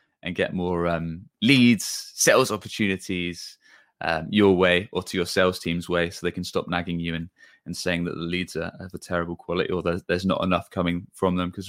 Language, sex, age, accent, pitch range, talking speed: English, male, 20-39, British, 90-105 Hz, 215 wpm